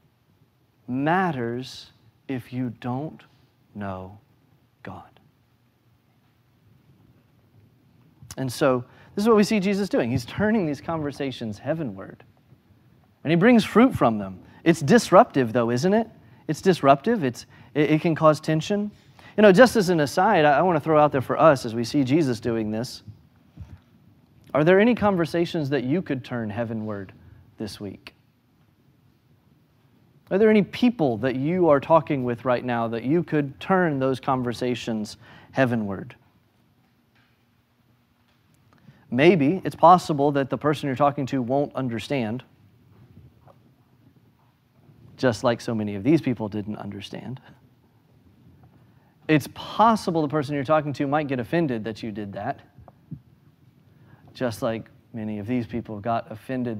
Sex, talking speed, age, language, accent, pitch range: male, 140 wpm, 40-59, English, American, 120-150 Hz